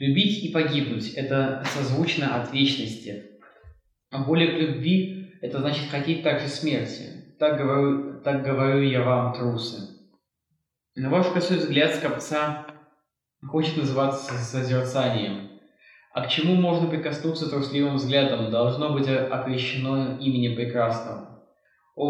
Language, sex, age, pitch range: Russian, male, 20-39, 130-155 Hz